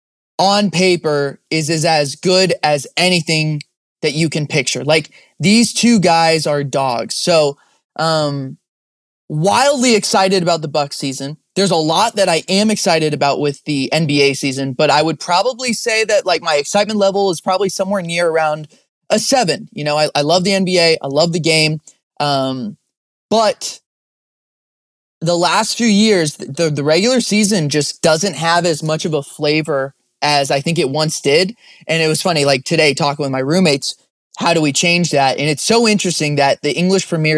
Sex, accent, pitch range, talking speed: male, American, 145-185 Hz, 180 wpm